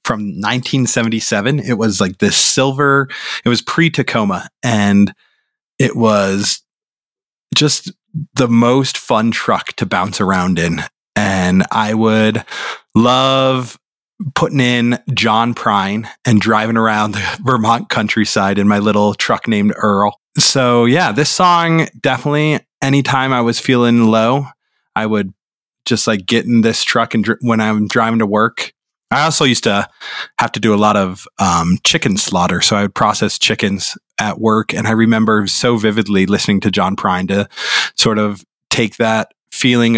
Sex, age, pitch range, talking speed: male, 20-39, 105-125 Hz, 150 wpm